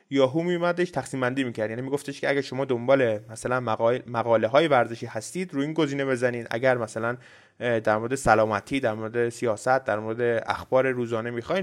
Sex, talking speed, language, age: male, 170 wpm, Persian, 20-39